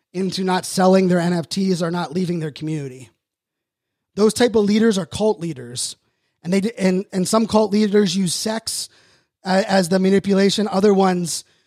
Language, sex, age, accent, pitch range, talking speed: English, male, 20-39, American, 165-190 Hz, 165 wpm